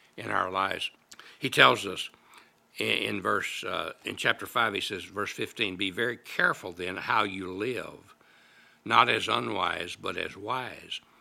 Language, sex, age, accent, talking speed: English, male, 60-79, American, 145 wpm